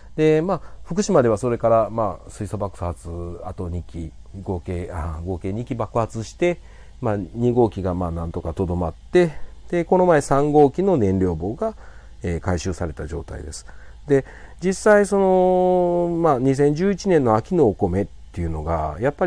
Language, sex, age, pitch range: Japanese, male, 40-59, 90-135 Hz